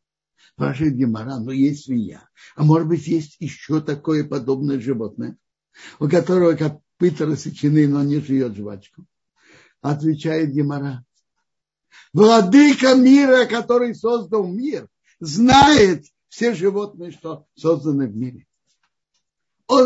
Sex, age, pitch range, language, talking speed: male, 60-79, 145-220 Hz, Russian, 110 wpm